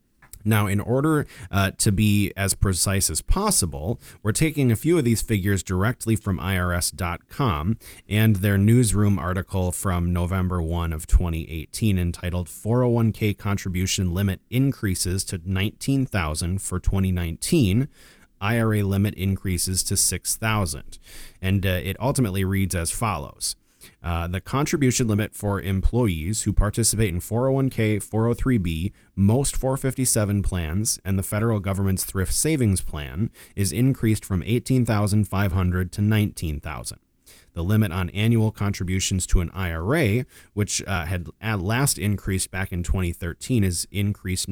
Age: 30-49